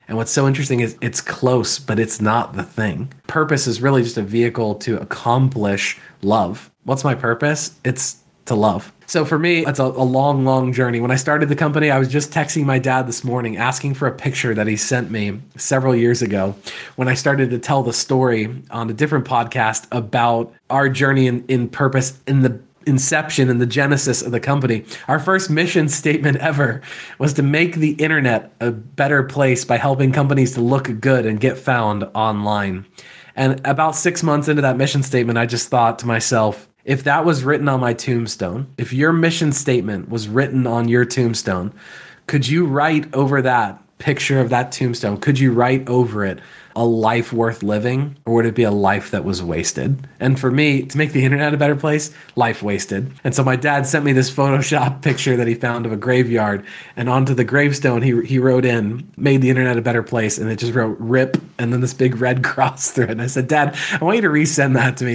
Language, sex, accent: English, male, American